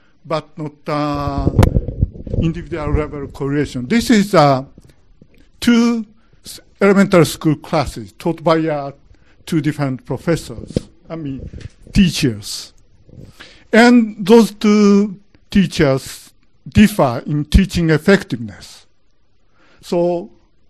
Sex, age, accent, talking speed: male, 60-79, Japanese, 95 wpm